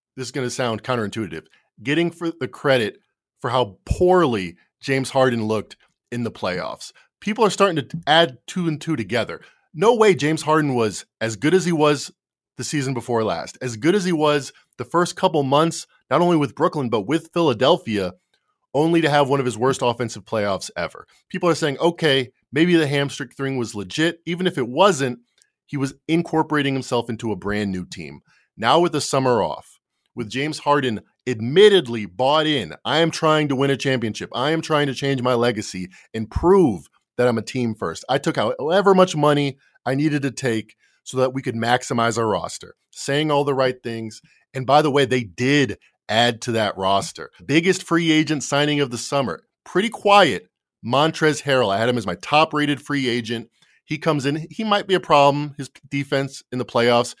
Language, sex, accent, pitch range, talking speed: English, male, American, 120-160 Hz, 195 wpm